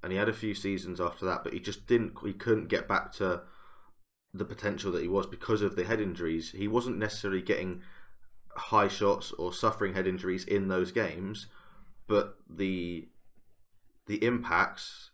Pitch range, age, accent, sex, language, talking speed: 90-105 Hz, 20-39, British, male, English, 175 wpm